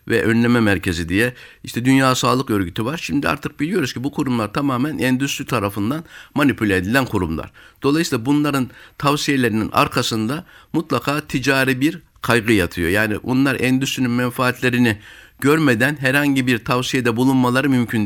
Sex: male